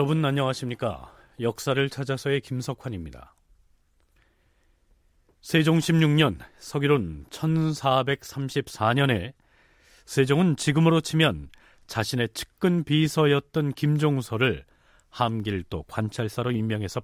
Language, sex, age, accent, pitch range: Korean, male, 40-59, native, 110-160 Hz